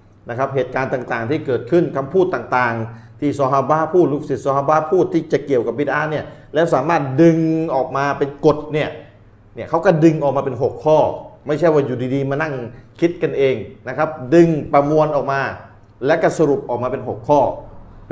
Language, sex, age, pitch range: Thai, male, 30-49, 135-175 Hz